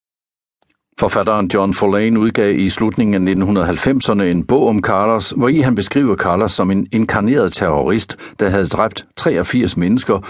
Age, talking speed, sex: 60-79, 150 wpm, male